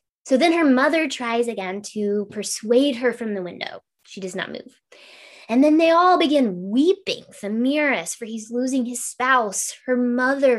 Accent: American